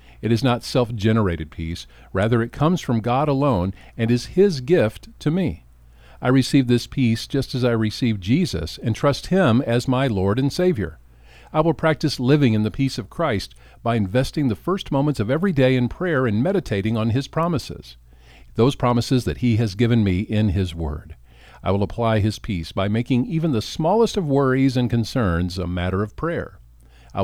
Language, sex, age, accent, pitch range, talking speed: English, male, 50-69, American, 90-135 Hz, 190 wpm